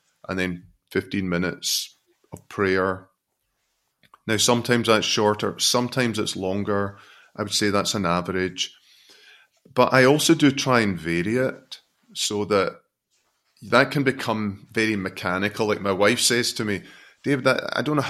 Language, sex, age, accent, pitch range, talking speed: English, male, 30-49, British, 100-120 Hz, 145 wpm